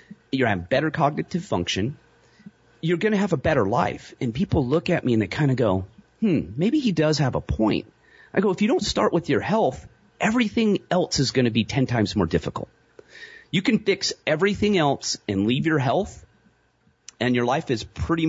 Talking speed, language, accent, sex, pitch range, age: 205 wpm, English, American, male, 100-150 Hz, 30-49